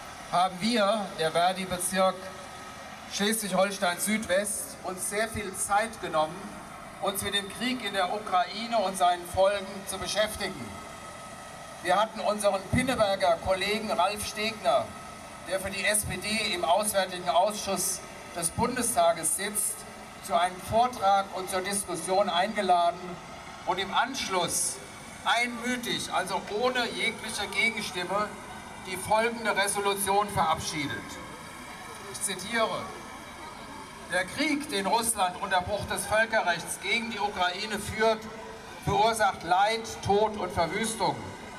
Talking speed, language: 110 wpm, English